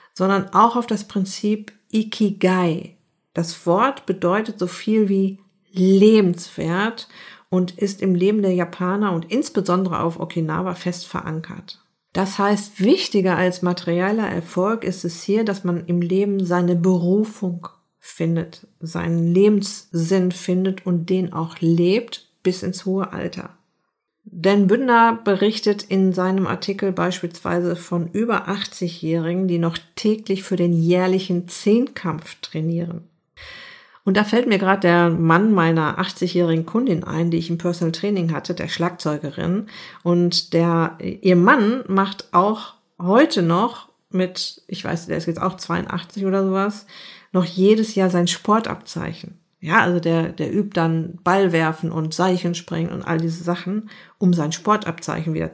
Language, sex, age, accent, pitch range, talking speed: German, female, 50-69, German, 175-200 Hz, 140 wpm